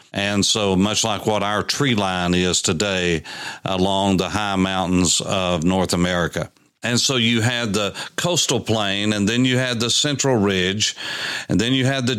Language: English